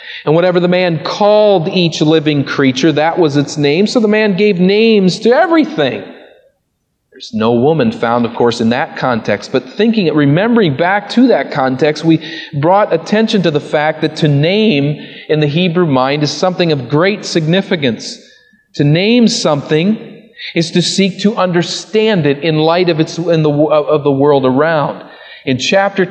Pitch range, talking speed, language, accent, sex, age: 155-215 Hz, 170 wpm, English, American, male, 40-59